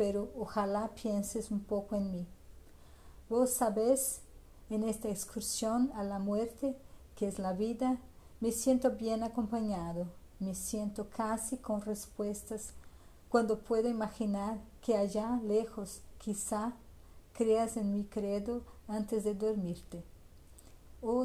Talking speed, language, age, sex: 120 wpm, Portuguese, 50-69, female